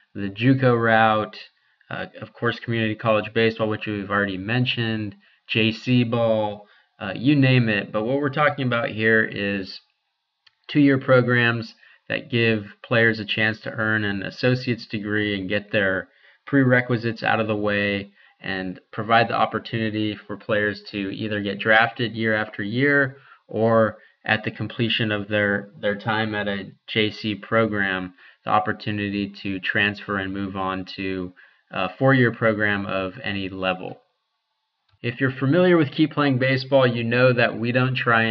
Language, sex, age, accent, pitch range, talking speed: English, male, 20-39, American, 100-120 Hz, 150 wpm